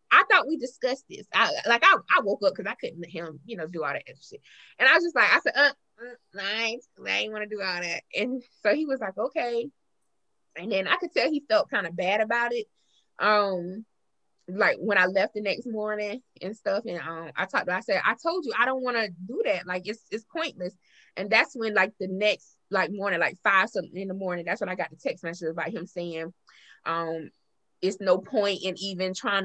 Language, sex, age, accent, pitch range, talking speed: English, female, 20-39, American, 185-245 Hz, 245 wpm